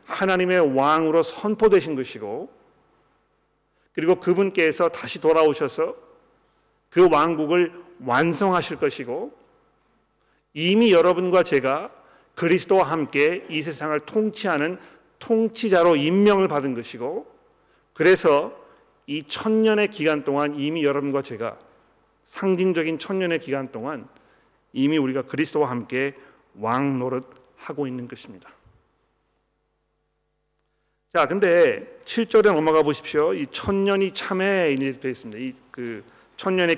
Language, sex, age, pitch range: Korean, male, 40-59, 145-195 Hz